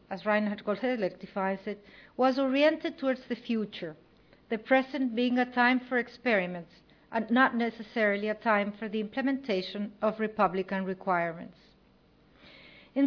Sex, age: female, 50-69